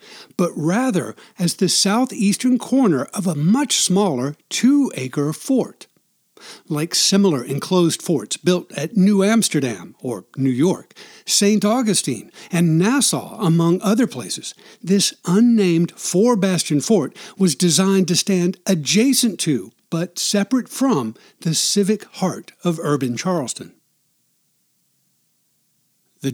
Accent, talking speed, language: American, 115 wpm, English